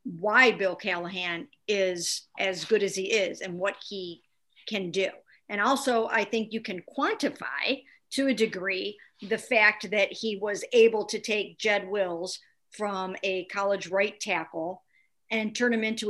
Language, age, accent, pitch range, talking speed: English, 50-69, American, 190-225 Hz, 160 wpm